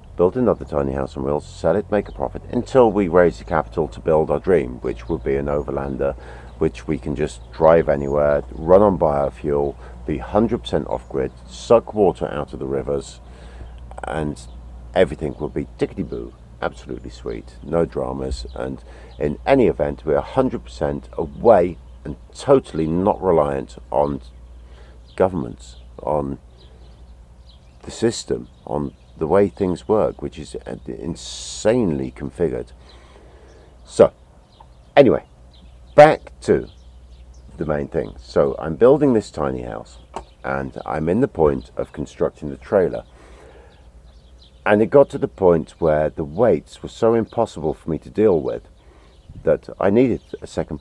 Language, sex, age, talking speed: Persian, male, 50-69, 150 wpm